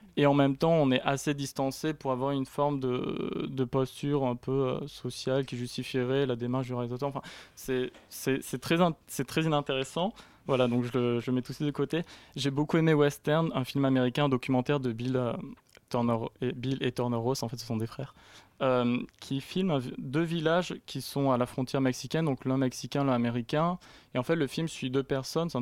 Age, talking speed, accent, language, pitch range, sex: 20-39, 215 wpm, French, French, 125-145 Hz, male